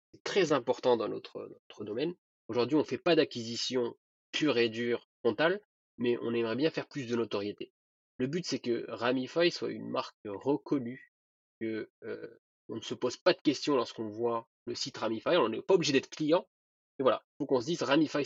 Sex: male